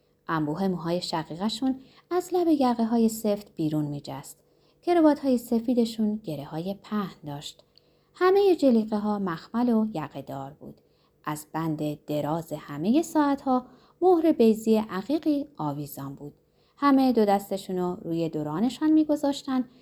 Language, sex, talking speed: Persian, female, 115 wpm